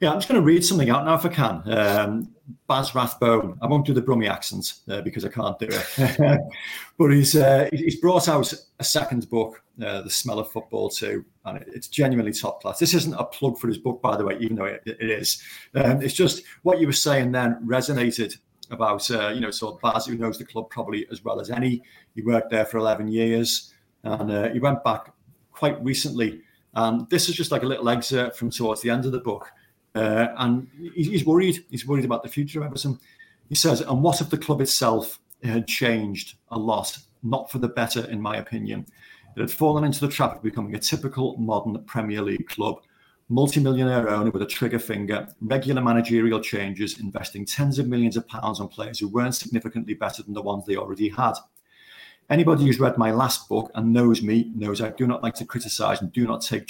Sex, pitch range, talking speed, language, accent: male, 110-140 Hz, 215 wpm, English, British